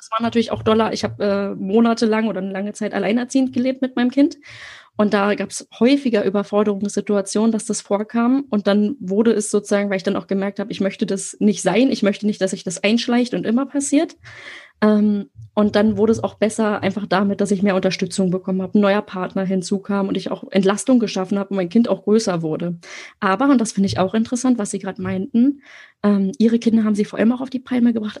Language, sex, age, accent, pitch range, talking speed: German, female, 20-39, German, 200-240 Hz, 225 wpm